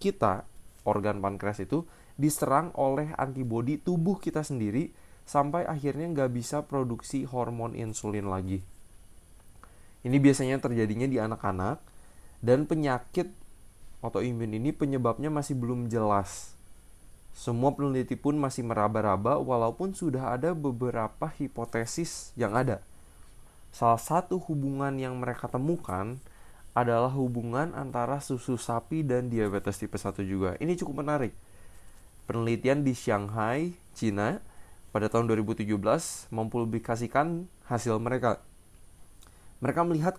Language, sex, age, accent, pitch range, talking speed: Indonesian, male, 20-39, native, 105-140 Hz, 110 wpm